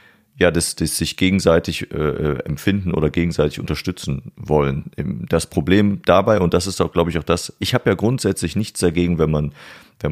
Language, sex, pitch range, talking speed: German, male, 80-100 Hz, 185 wpm